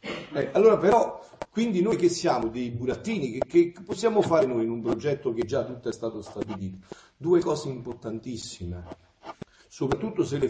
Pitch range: 105-170 Hz